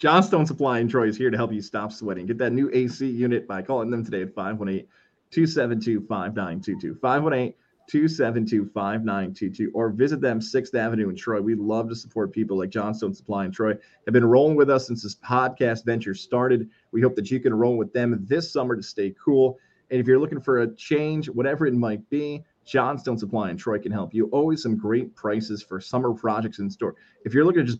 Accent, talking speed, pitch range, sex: American, 205 wpm, 105-130 Hz, male